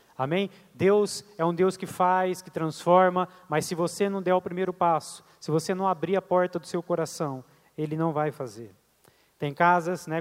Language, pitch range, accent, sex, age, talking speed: Portuguese, 140-180 Hz, Brazilian, male, 20-39, 195 wpm